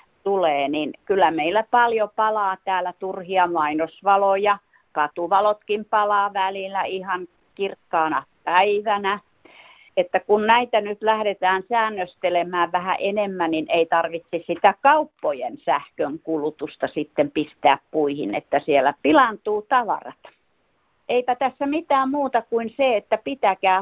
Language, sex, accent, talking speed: Finnish, female, native, 110 wpm